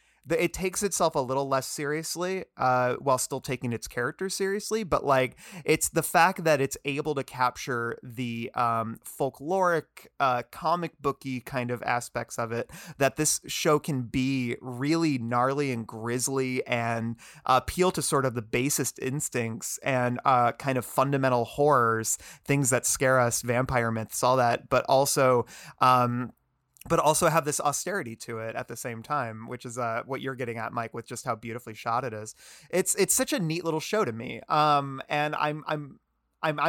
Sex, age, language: male, 30-49, English